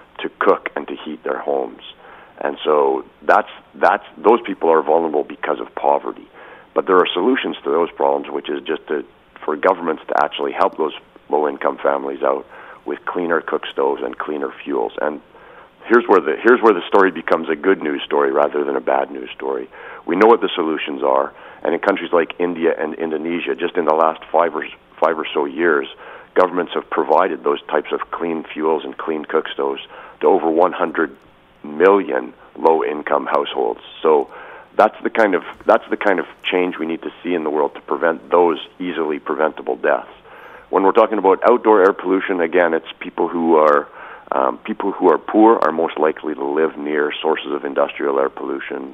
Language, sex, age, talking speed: English, male, 50-69, 190 wpm